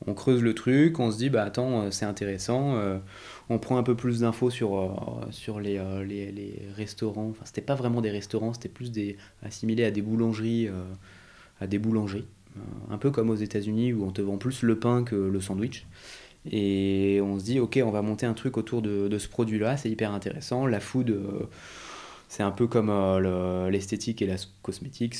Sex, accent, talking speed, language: male, French, 200 wpm, French